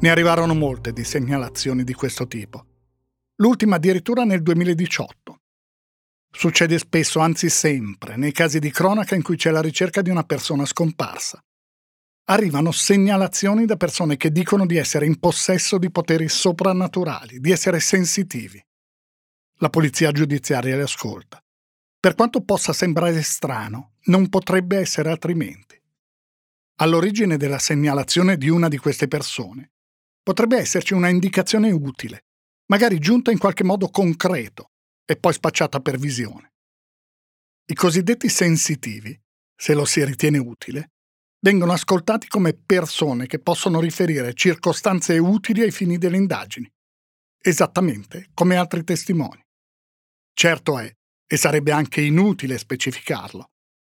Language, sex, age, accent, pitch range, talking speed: Italian, male, 50-69, native, 140-185 Hz, 130 wpm